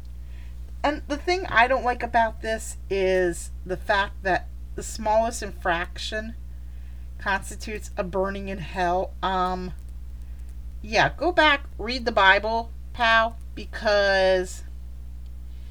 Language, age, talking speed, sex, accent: English, 40-59, 110 wpm, female, American